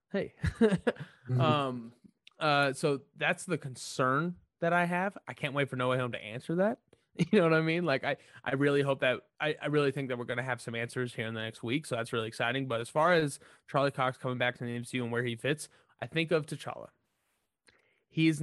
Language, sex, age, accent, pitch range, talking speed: English, male, 20-39, American, 120-150 Hz, 230 wpm